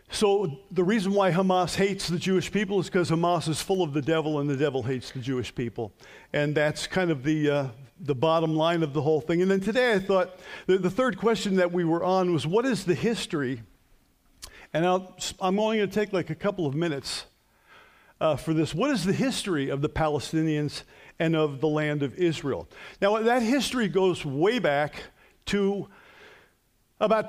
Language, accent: English, American